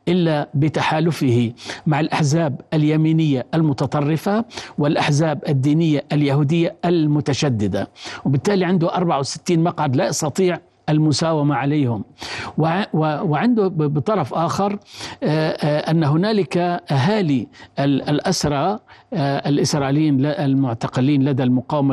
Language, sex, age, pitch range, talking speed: Arabic, male, 50-69, 145-175 Hz, 90 wpm